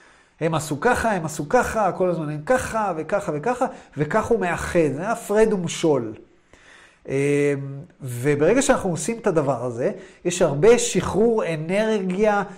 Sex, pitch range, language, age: male, 155-195 Hz, Hebrew, 30-49